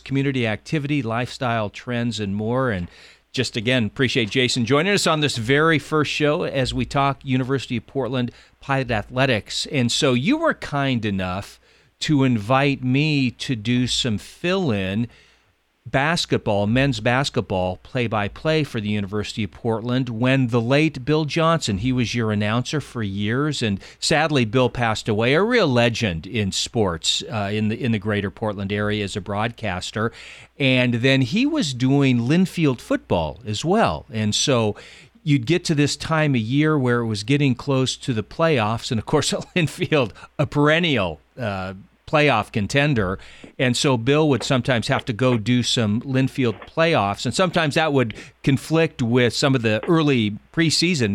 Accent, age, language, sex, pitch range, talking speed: American, 40-59, English, male, 110-145 Hz, 160 wpm